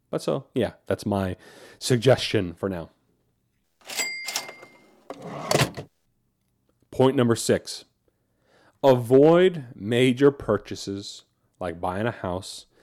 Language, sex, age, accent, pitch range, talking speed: English, male, 30-49, American, 105-140 Hz, 85 wpm